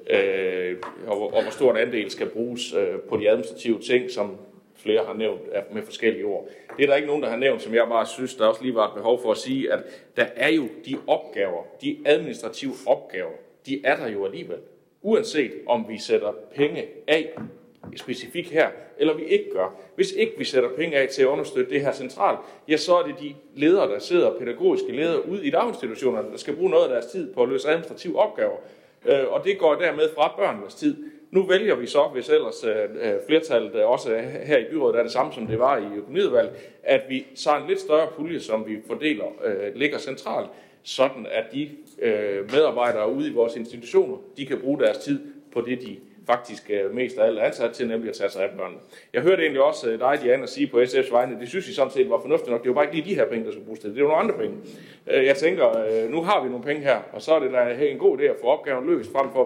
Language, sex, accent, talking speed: Danish, male, native, 230 wpm